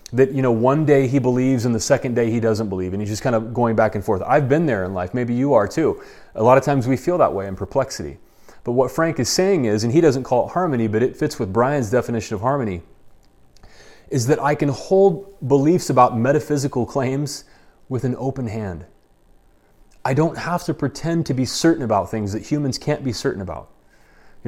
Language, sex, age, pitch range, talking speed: English, male, 30-49, 115-150 Hz, 225 wpm